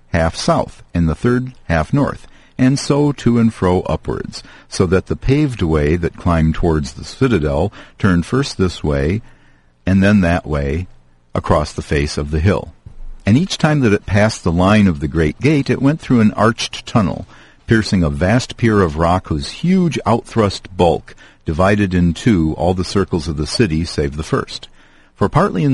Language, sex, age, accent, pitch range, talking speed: English, male, 50-69, American, 85-115 Hz, 185 wpm